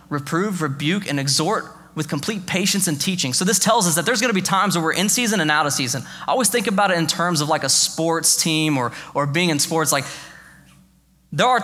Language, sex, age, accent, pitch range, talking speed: English, male, 20-39, American, 155-205 Hz, 235 wpm